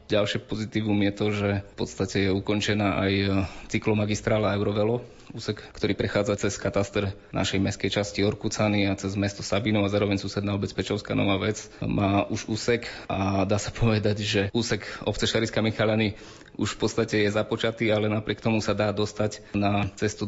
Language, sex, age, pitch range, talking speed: Slovak, male, 20-39, 95-105 Hz, 165 wpm